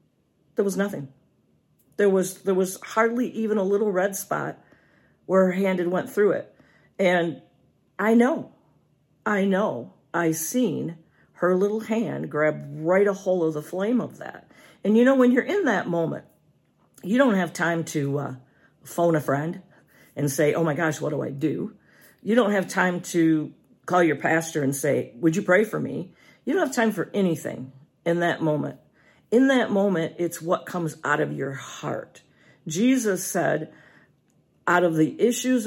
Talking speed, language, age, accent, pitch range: 175 wpm, English, 50-69, American, 165-215 Hz